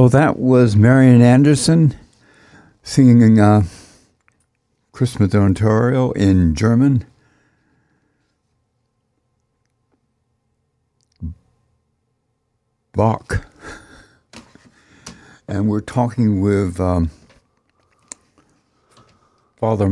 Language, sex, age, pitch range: English, male, 60-79, 95-120 Hz